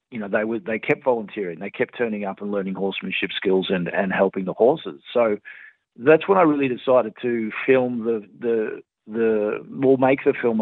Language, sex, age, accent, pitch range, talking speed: English, male, 40-59, Australian, 100-125 Hz, 200 wpm